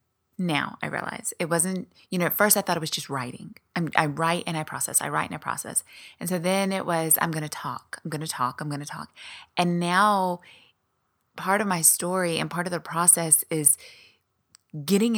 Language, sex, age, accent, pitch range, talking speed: English, female, 20-39, American, 155-185 Hz, 220 wpm